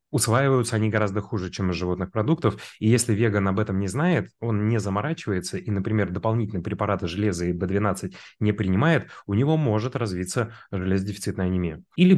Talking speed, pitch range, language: 170 wpm, 90-110 Hz, Russian